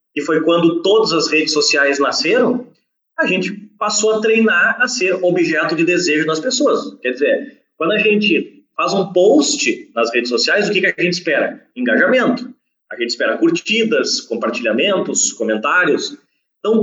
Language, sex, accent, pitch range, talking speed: Portuguese, male, Brazilian, 165-235 Hz, 160 wpm